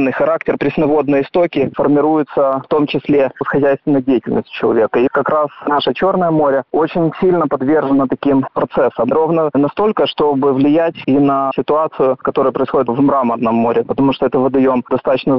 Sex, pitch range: male, 135-165 Hz